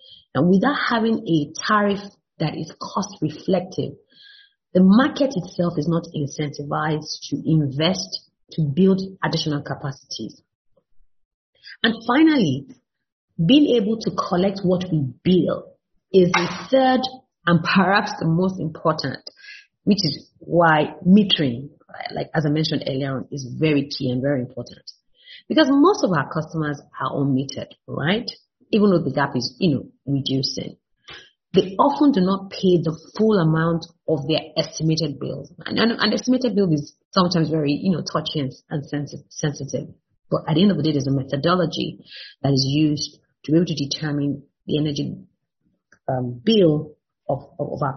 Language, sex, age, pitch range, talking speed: English, female, 30-49, 145-195 Hz, 150 wpm